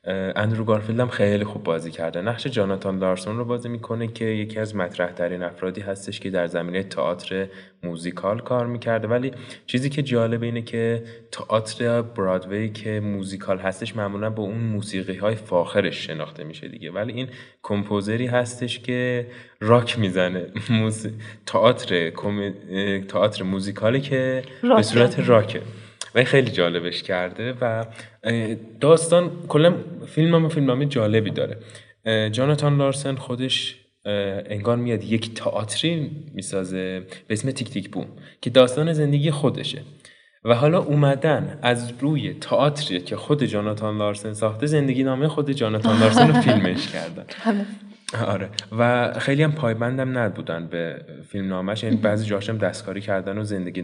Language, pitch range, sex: Persian, 100-125 Hz, male